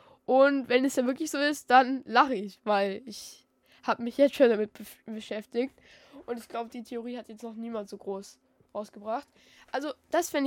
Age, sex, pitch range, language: 10-29, female, 210-255 Hz, German